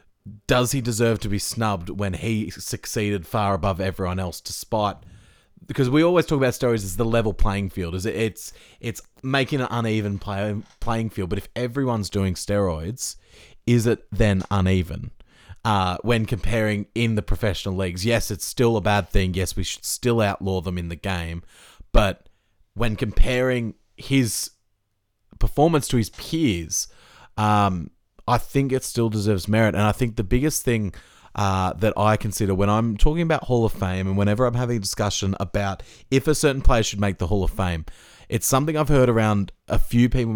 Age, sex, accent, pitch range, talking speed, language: 30-49, male, Australian, 100-125 Hz, 185 wpm, English